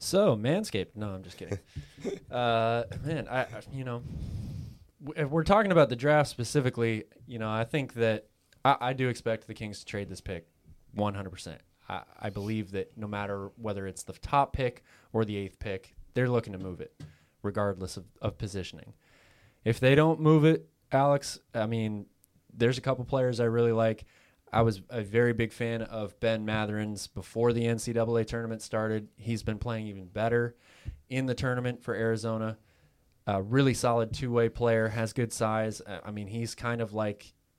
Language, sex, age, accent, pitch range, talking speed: English, male, 20-39, American, 100-120 Hz, 175 wpm